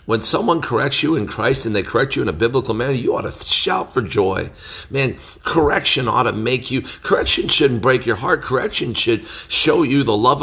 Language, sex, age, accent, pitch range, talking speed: English, male, 50-69, American, 95-155 Hz, 215 wpm